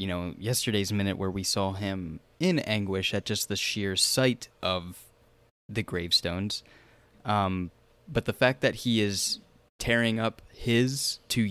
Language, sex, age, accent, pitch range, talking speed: English, male, 20-39, American, 95-120 Hz, 150 wpm